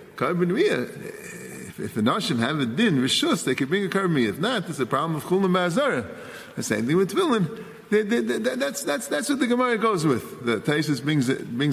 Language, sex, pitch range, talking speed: English, male, 145-220 Hz, 210 wpm